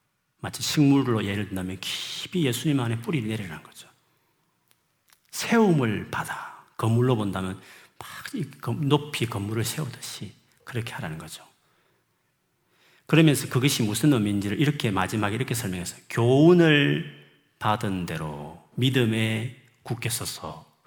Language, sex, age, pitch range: Korean, male, 40-59, 105-140 Hz